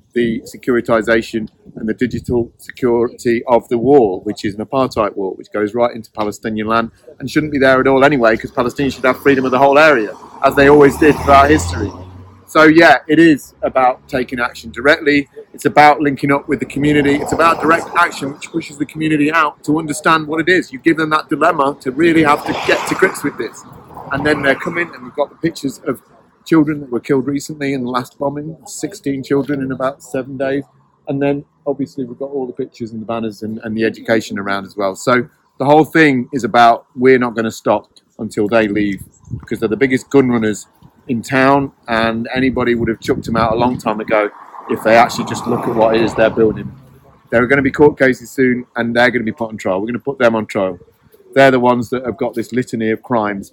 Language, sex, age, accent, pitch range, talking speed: English, male, 40-59, British, 115-140 Hz, 230 wpm